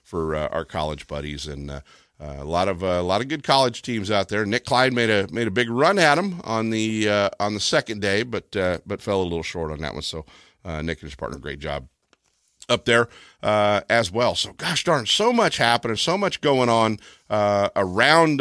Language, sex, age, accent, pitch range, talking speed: English, male, 50-69, American, 95-130 Hz, 235 wpm